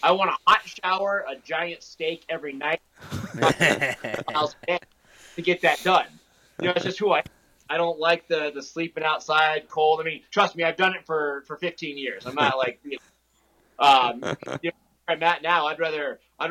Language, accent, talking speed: English, American, 200 wpm